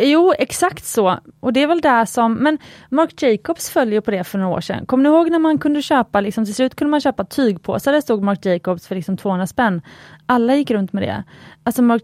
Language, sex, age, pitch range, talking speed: Swedish, female, 30-49, 190-245 Hz, 235 wpm